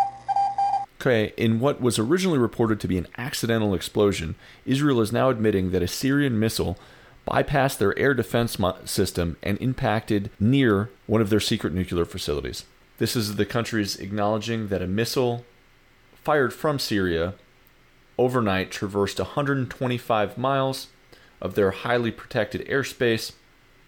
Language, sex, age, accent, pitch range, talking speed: English, male, 30-49, American, 95-120 Hz, 130 wpm